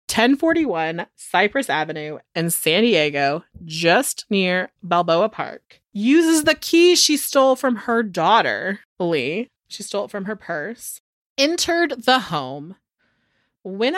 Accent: American